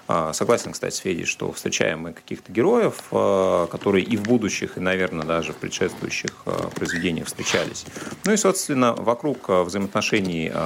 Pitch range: 85-110 Hz